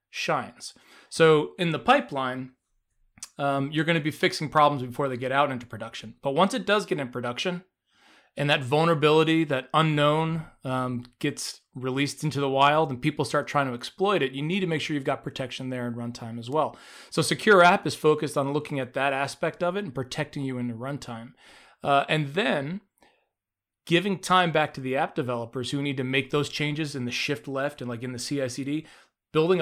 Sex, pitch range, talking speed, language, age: male, 125-155 Hz, 205 wpm, English, 30-49